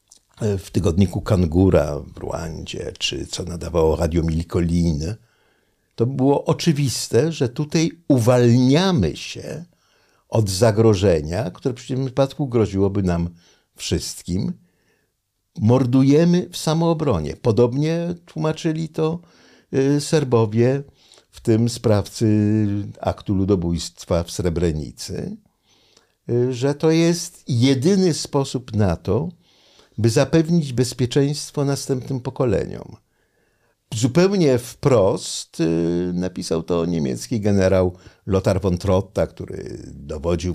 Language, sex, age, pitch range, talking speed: Polish, male, 60-79, 90-135 Hz, 95 wpm